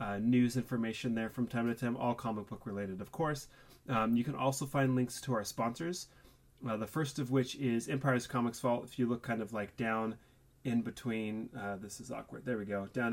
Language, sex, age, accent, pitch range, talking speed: English, male, 30-49, American, 110-135 Hz, 225 wpm